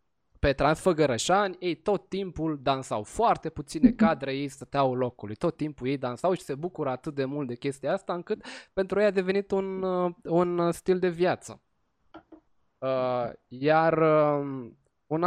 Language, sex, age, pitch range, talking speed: Romanian, male, 20-39, 140-180 Hz, 145 wpm